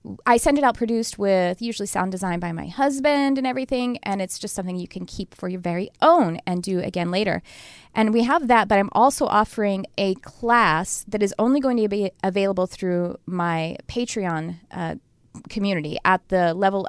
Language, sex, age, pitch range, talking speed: English, female, 30-49, 185-235 Hz, 190 wpm